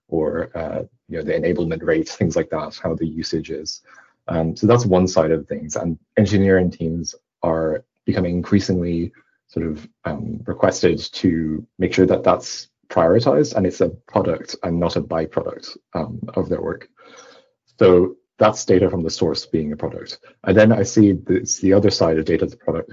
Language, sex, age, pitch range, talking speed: English, male, 30-49, 80-95 Hz, 185 wpm